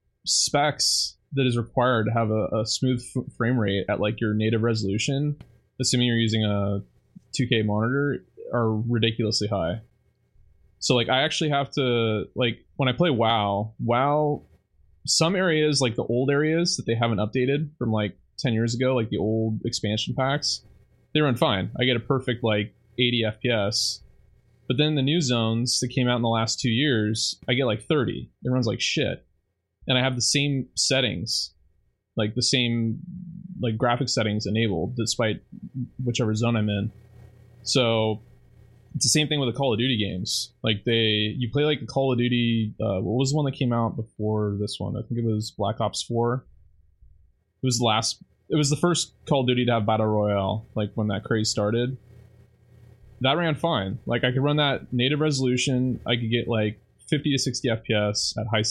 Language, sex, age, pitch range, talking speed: English, male, 20-39, 110-130 Hz, 190 wpm